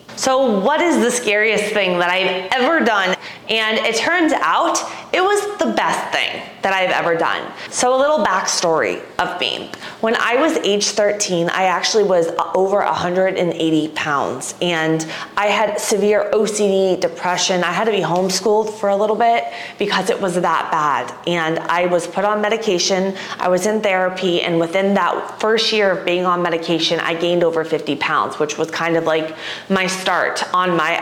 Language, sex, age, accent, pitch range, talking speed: English, female, 20-39, American, 175-220 Hz, 180 wpm